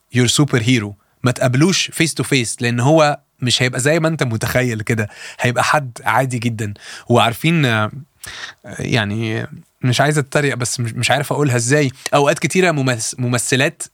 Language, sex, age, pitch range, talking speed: Arabic, male, 20-39, 130-200 Hz, 145 wpm